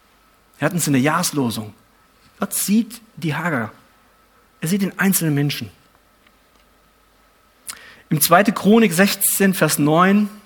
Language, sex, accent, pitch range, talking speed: German, male, German, 150-200 Hz, 120 wpm